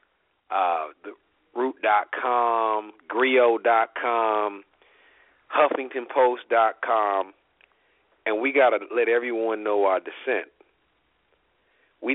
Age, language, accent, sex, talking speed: 40-59, English, American, male, 75 wpm